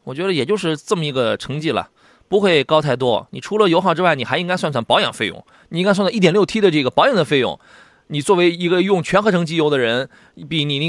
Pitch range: 130-180 Hz